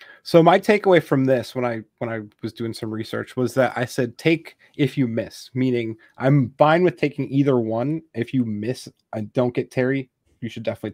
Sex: male